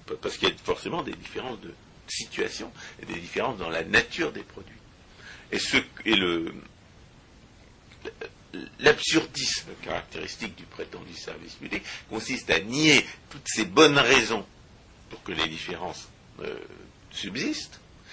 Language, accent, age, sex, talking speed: French, French, 60-79, male, 130 wpm